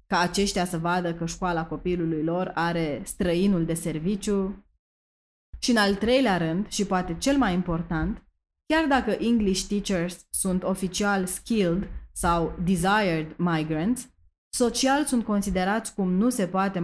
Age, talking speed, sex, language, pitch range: 20-39, 140 wpm, female, Romanian, 170-210 Hz